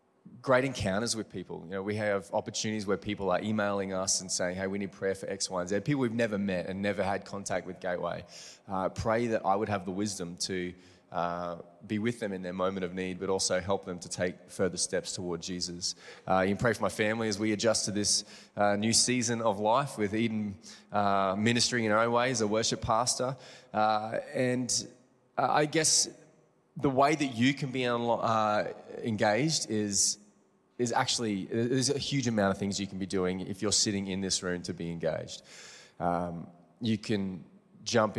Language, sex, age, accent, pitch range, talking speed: English, male, 20-39, Australian, 90-110 Hz, 205 wpm